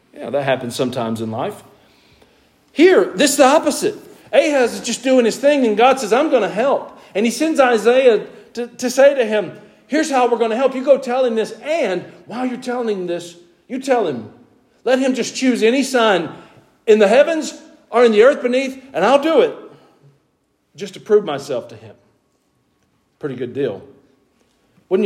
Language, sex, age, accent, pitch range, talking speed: English, male, 50-69, American, 175-275 Hz, 195 wpm